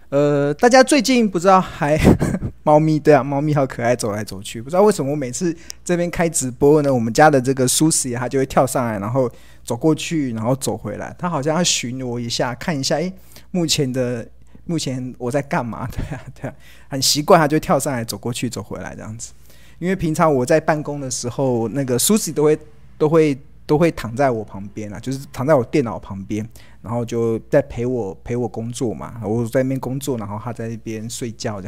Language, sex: Chinese, male